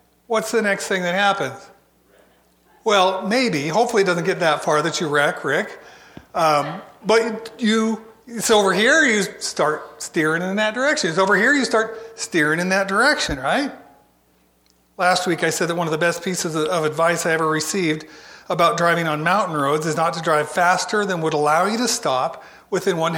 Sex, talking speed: male, 185 wpm